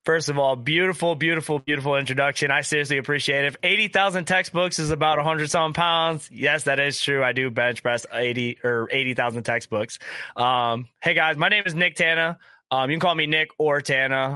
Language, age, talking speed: English, 20-39, 210 wpm